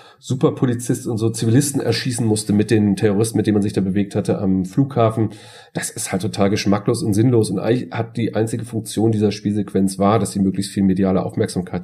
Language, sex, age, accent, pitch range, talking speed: German, male, 40-59, German, 105-140 Hz, 205 wpm